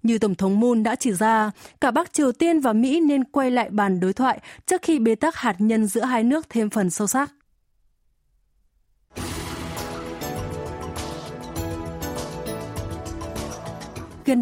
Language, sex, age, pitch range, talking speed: Vietnamese, female, 20-39, 200-270 Hz, 135 wpm